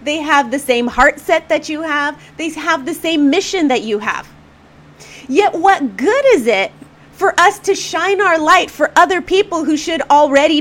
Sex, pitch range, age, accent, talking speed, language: female, 225-335 Hz, 30-49, American, 190 wpm, English